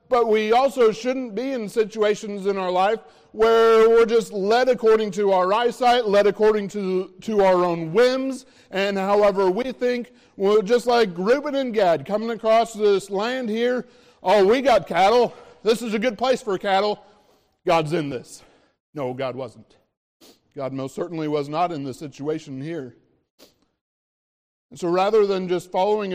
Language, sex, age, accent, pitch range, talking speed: English, male, 40-59, American, 165-215 Hz, 165 wpm